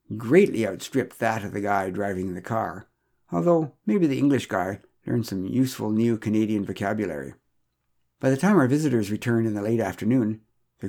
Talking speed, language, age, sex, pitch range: 170 wpm, English, 60-79, male, 100-130 Hz